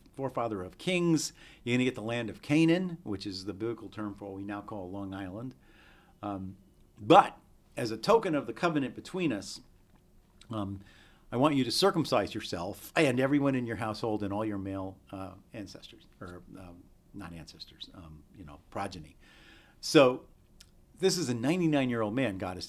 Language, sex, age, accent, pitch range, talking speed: English, male, 50-69, American, 95-140 Hz, 175 wpm